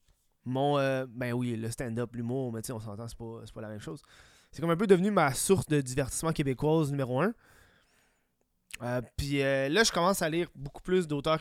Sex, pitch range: male, 130-170 Hz